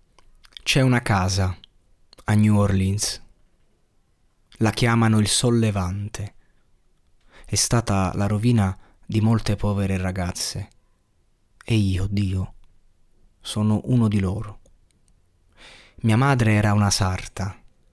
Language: Italian